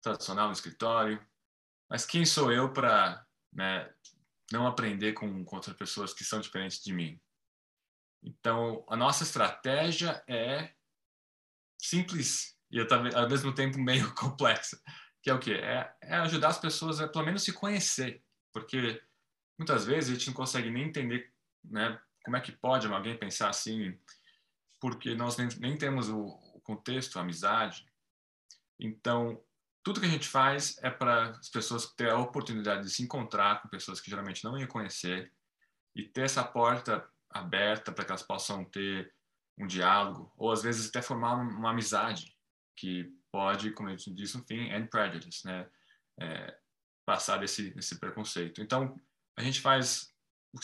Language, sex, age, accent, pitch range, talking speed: Portuguese, male, 20-39, Brazilian, 100-130 Hz, 160 wpm